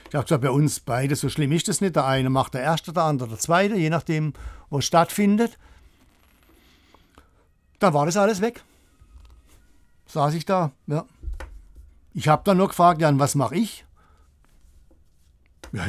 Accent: German